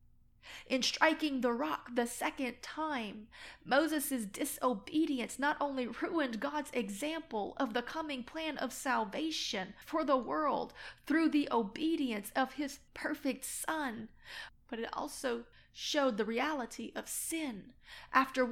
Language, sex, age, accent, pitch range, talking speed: English, female, 30-49, American, 240-305 Hz, 125 wpm